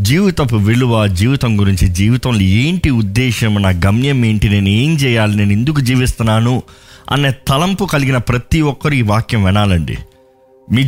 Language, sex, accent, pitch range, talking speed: Telugu, male, native, 100-130 Hz, 140 wpm